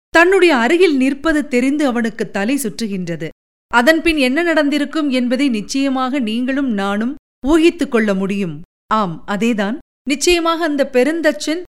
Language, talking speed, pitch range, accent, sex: Tamil, 115 wpm, 230-310 Hz, native, female